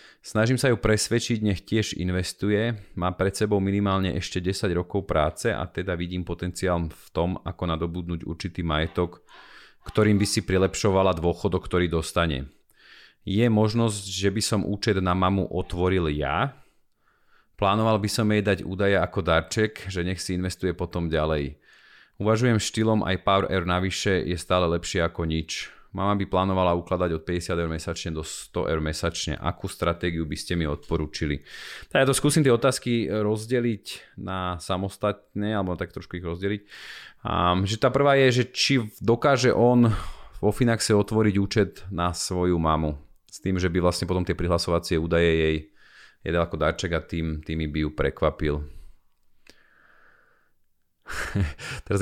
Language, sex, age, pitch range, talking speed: Slovak, male, 30-49, 85-105 Hz, 155 wpm